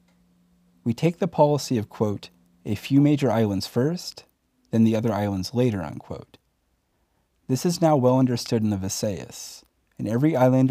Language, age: English, 30-49